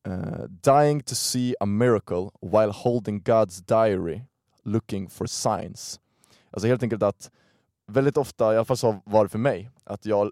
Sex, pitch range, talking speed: male, 100-120 Hz, 170 wpm